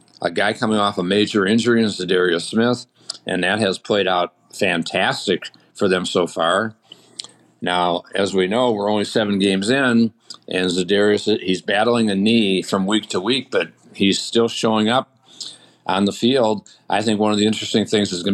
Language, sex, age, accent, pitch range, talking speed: English, male, 50-69, American, 100-110 Hz, 185 wpm